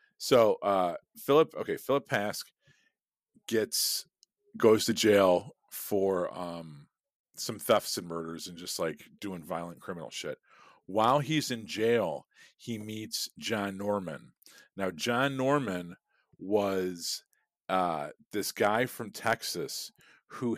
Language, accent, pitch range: English, American, 90-115 Hz